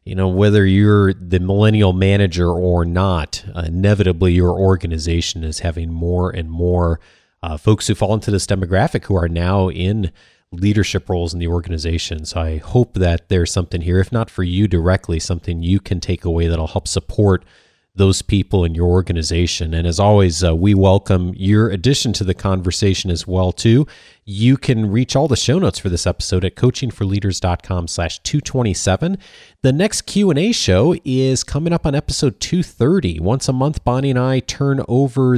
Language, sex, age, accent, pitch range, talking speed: English, male, 30-49, American, 90-115 Hz, 175 wpm